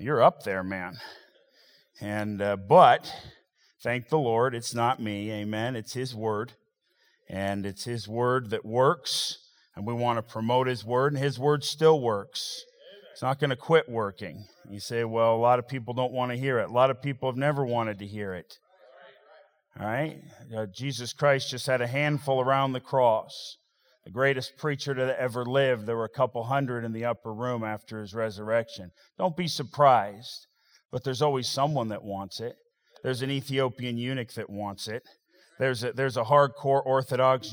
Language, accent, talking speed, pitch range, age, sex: English, American, 185 wpm, 115-135 Hz, 40-59, male